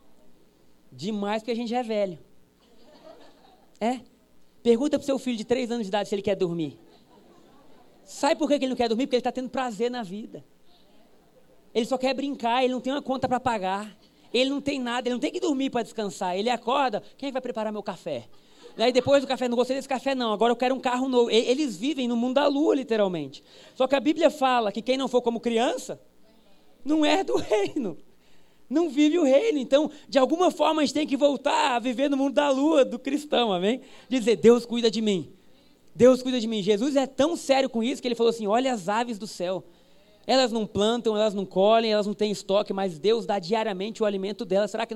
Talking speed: 225 wpm